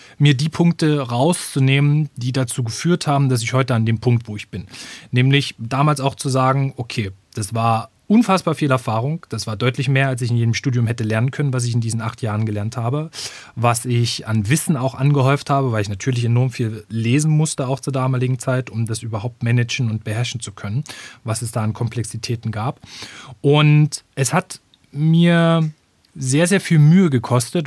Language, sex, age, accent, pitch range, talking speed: German, male, 30-49, German, 115-150 Hz, 195 wpm